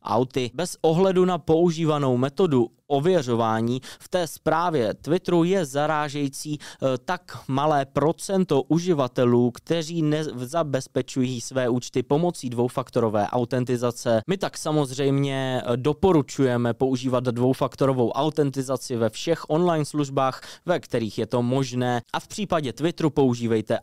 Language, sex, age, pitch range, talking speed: Czech, male, 20-39, 120-155 Hz, 110 wpm